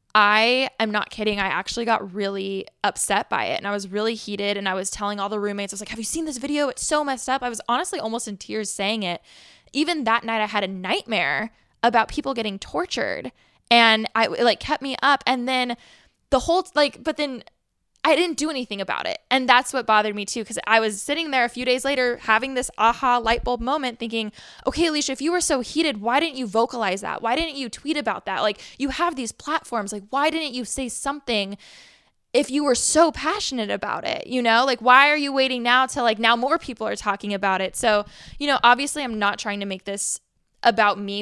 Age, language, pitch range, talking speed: 10-29, English, 205-270 Hz, 235 wpm